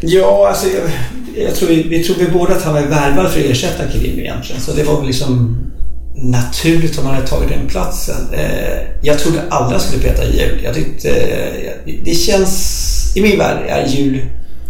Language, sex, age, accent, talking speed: English, male, 50-69, Swedish, 200 wpm